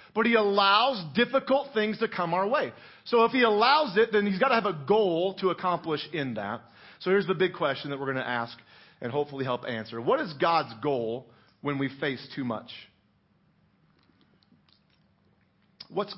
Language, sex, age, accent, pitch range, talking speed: English, male, 40-59, American, 140-180 Hz, 180 wpm